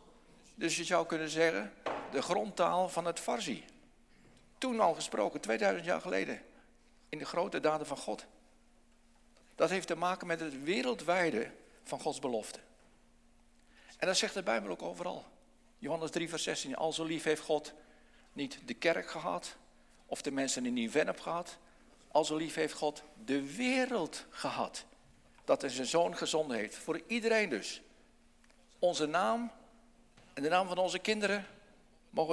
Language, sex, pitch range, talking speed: Dutch, male, 150-210 Hz, 160 wpm